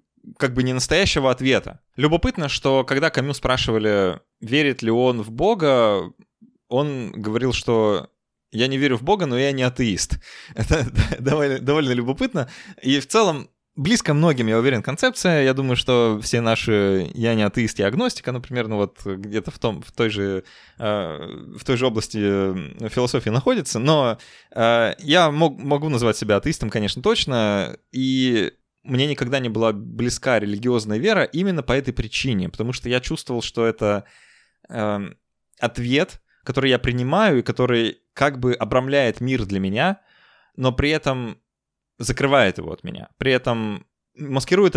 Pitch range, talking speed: 110-140 Hz, 155 wpm